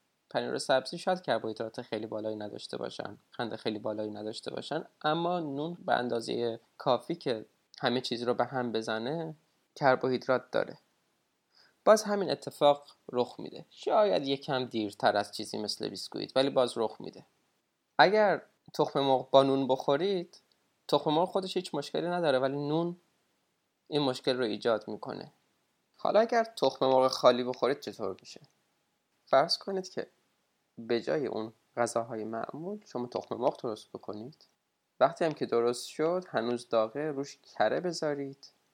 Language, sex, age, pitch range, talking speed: Persian, male, 20-39, 115-155 Hz, 145 wpm